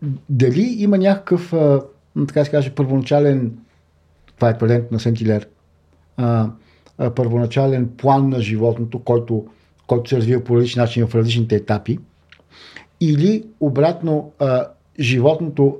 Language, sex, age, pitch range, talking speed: Bulgarian, male, 50-69, 110-140 Hz, 90 wpm